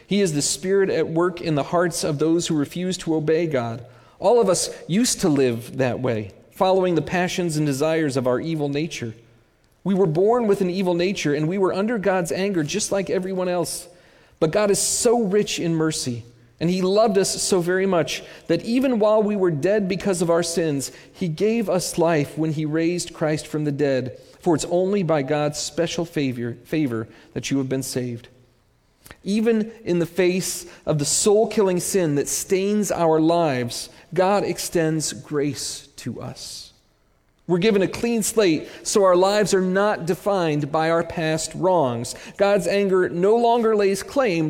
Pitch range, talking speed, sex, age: 150-195 Hz, 185 wpm, male, 40-59